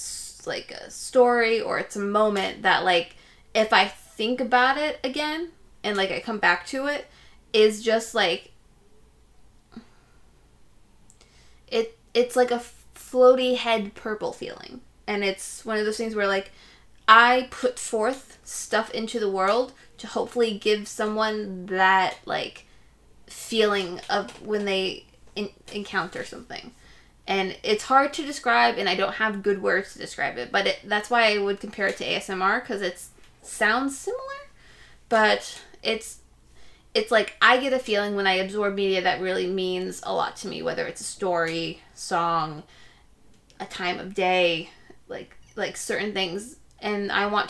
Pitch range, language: 190-235 Hz, English